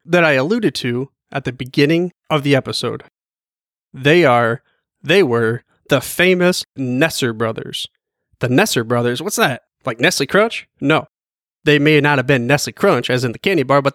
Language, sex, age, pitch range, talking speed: English, male, 30-49, 130-175 Hz, 170 wpm